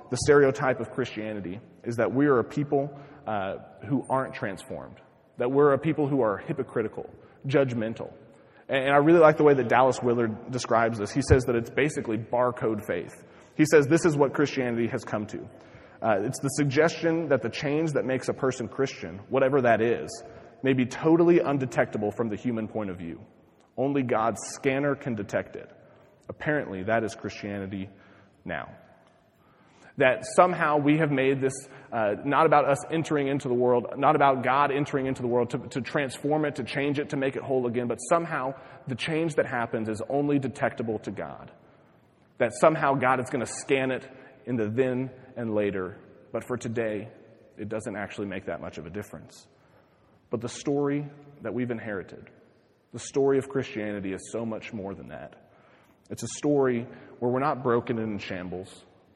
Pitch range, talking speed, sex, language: 110-140 Hz, 185 wpm, male, English